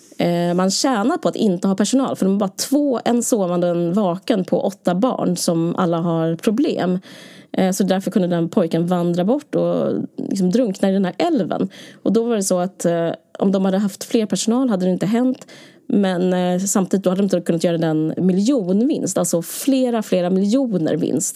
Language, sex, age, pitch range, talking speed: Swedish, female, 20-39, 180-230 Hz, 195 wpm